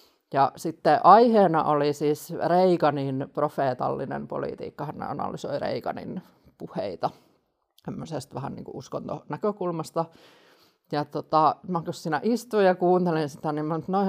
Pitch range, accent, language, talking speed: 145-185 Hz, native, Finnish, 120 wpm